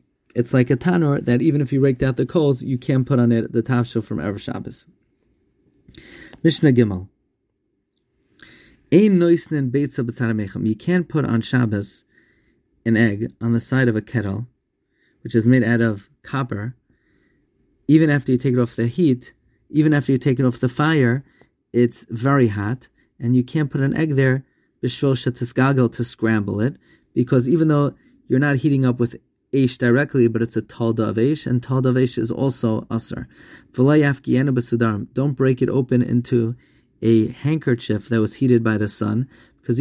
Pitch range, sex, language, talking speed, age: 115-135 Hz, male, English, 165 wpm, 30-49